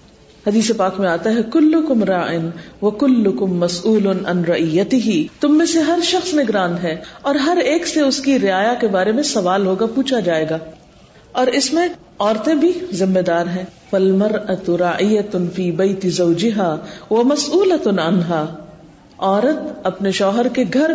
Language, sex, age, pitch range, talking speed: Urdu, female, 50-69, 195-290 Hz, 145 wpm